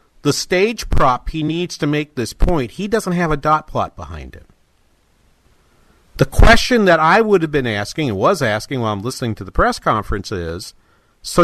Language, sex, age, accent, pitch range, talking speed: English, male, 50-69, American, 110-160 Hz, 195 wpm